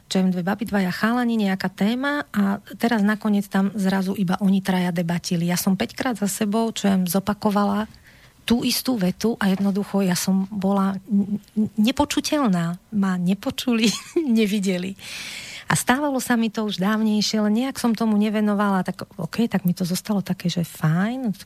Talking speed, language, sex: 160 wpm, Slovak, female